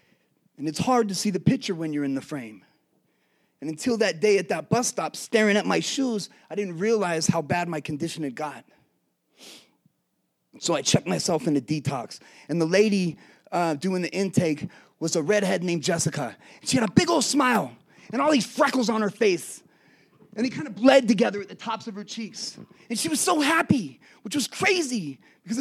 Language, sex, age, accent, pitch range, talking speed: English, male, 30-49, American, 175-250 Hz, 205 wpm